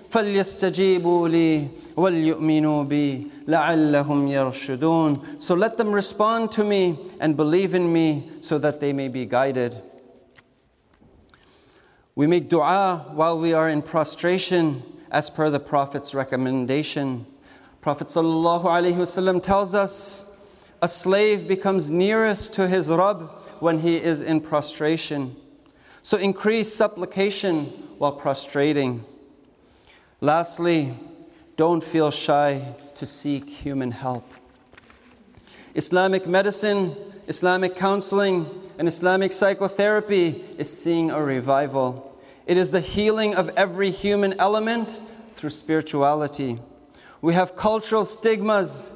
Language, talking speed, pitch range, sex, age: English, 105 wpm, 145-190 Hz, male, 40-59